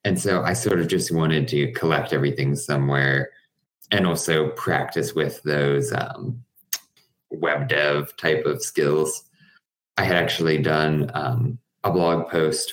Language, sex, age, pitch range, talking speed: English, male, 20-39, 70-80 Hz, 140 wpm